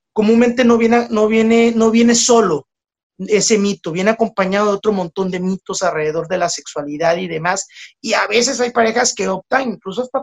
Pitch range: 175-230 Hz